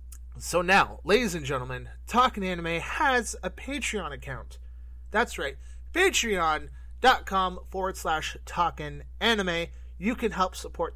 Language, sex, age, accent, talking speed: English, male, 30-49, American, 120 wpm